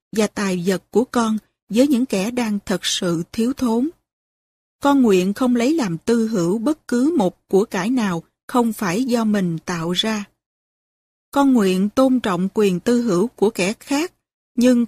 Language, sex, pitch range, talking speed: Vietnamese, female, 190-250 Hz, 175 wpm